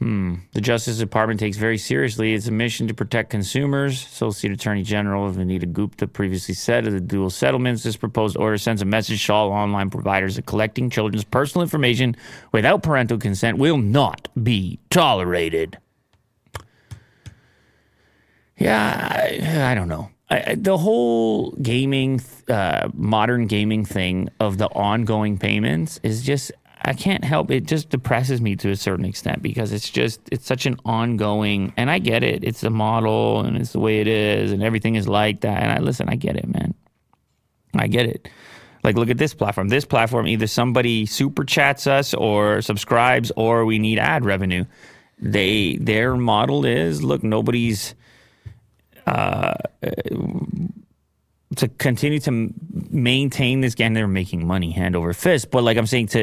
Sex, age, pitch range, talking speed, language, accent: male, 30-49, 105-125 Hz, 160 wpm, English, American